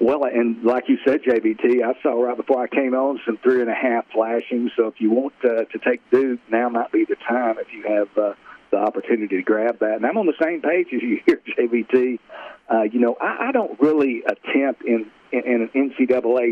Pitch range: 110-125 Hz